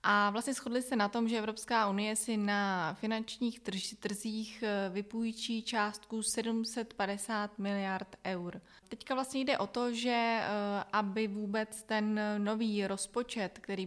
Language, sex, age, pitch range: Czech, female, 20-39, 195-225 Hz